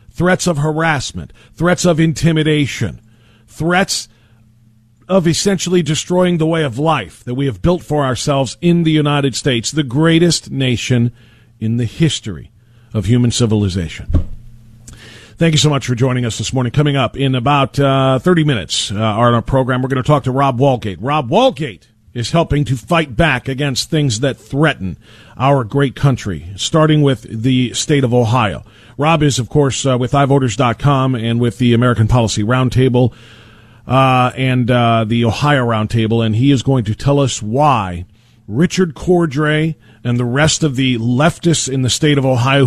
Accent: American